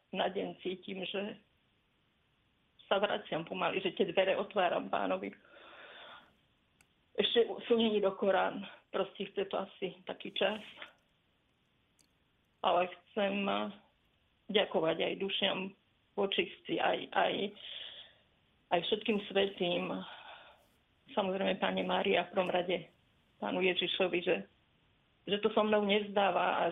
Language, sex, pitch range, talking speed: Slovak, female, 180-205 Hz, 105 wpm